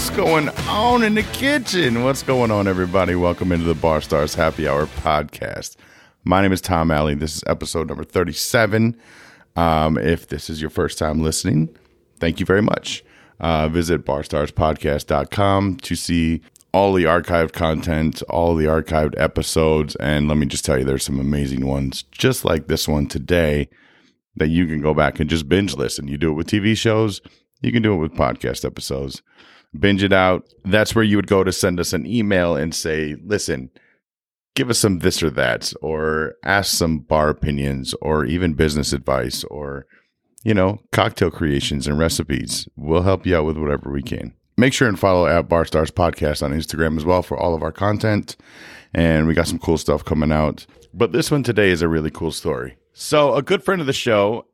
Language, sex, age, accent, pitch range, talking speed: English, male, 30-49, American, 75-95 Hz, 195 wpm